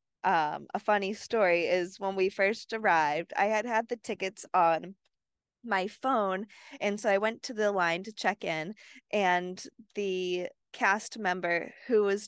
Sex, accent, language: female, American, English